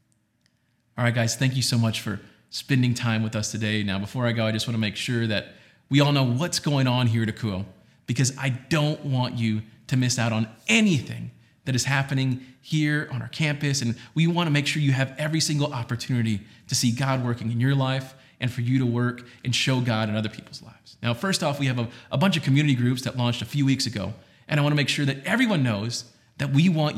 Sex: male